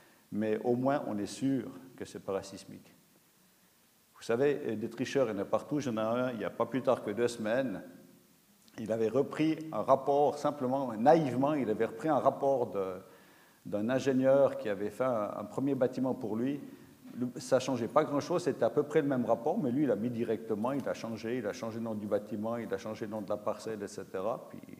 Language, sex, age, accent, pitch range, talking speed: French, male, 50-69, French, 115-155 Hz, 225 wpm